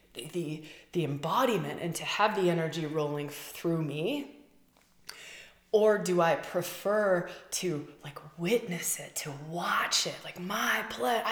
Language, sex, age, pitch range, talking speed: English, female, 20-39, 170-215 Hz, 135 wpm